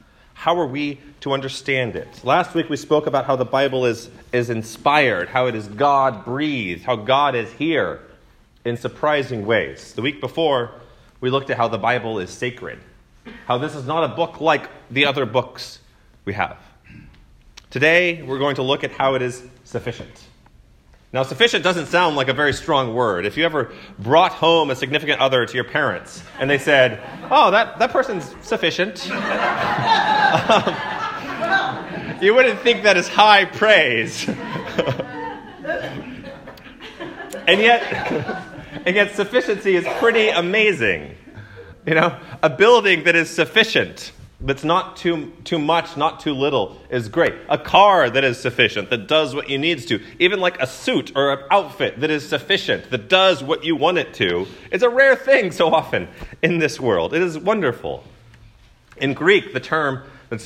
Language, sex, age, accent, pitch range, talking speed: English, male, 30-49, American, 125-170 Hz, 165 wpm